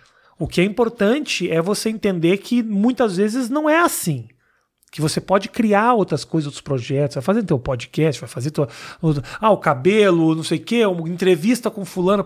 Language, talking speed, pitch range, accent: Portuguese, 195 wpm, 155-210 Hz, Brazilian